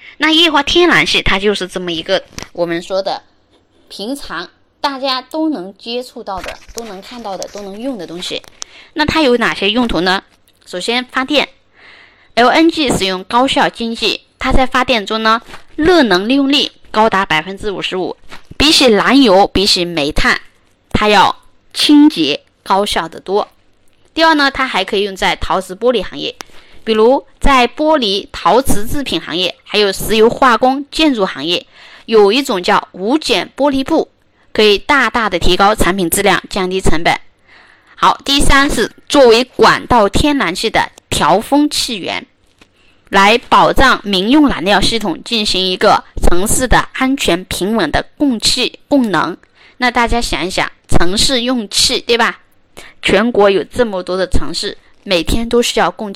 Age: 20-39